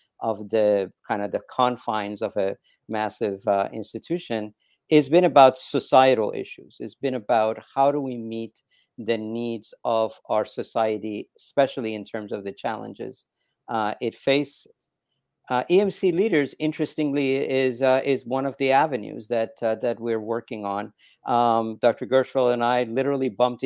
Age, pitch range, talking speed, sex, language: 50-69, 110-130 Hz, 155 wpm, male, English